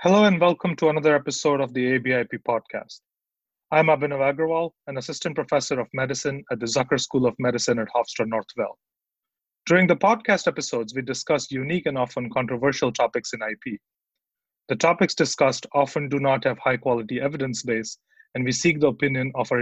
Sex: male